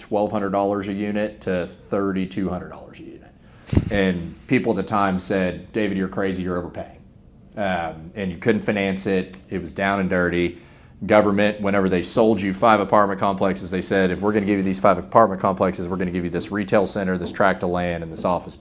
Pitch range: 90-100 Hz